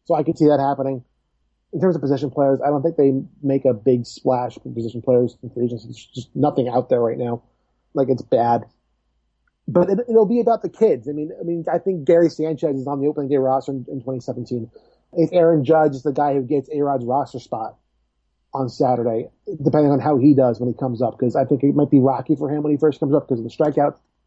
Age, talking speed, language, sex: 30-49, 240 wpm, English, male